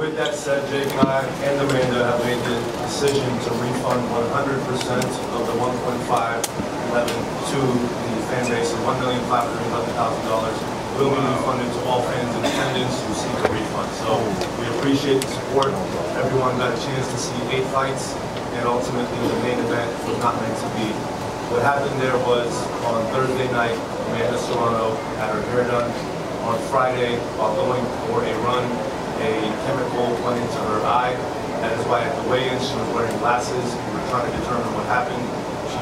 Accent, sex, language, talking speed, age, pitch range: American, male, English, 170 wpm, 30-49, 120-130 Hz